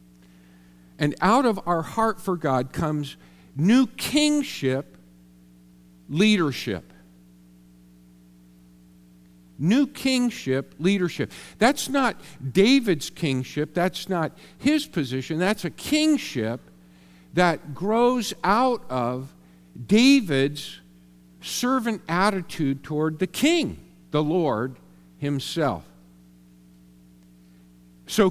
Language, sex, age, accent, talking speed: English, male, 50-69, American, 85 wpm